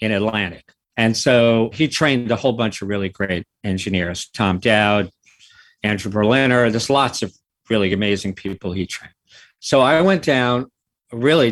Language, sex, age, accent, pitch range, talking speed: English, male, 50-69, American, 100-125 Hz, 155 wpm